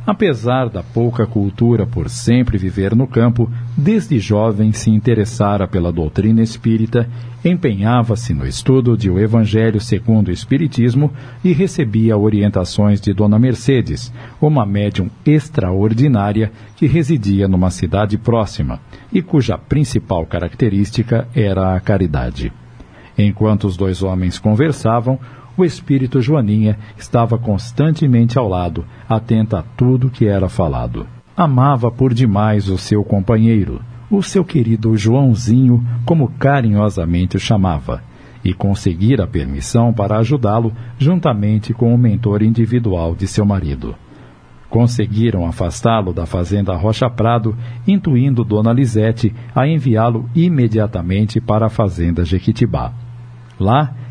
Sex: male